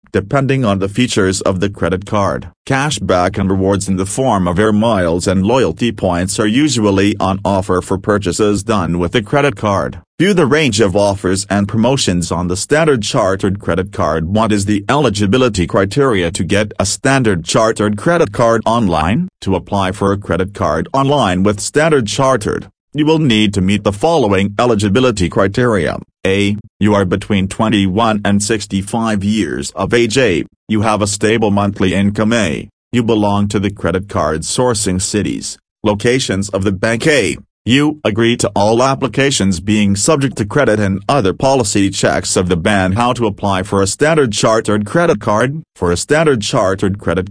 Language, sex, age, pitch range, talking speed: English, male, 40-59, 95-115 Hz, 175 wpm